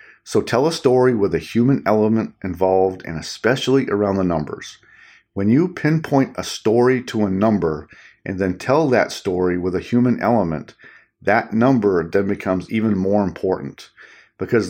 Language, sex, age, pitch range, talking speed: English, male, 40-59, 90-115 Hz, 160 wpm